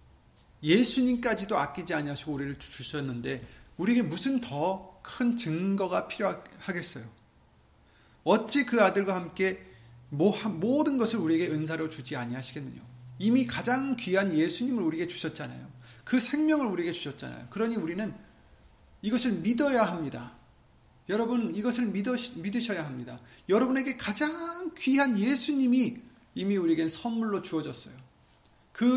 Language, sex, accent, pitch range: Korean, male, native, 145-235 Hz